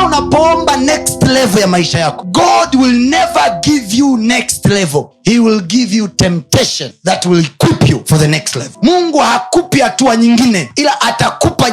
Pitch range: 170-250 Hz